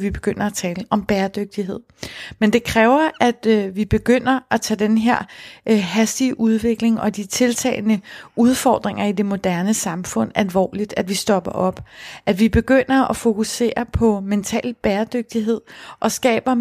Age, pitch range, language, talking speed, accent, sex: 30-49, 205-235 Hz, Danish, 150 wpm, native, female